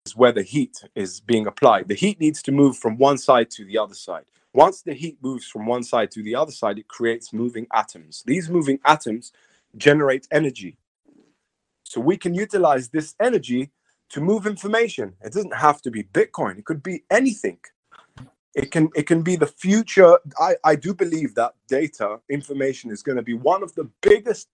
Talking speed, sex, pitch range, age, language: 190 wpm, male, 120-175 Hz, 30-49, English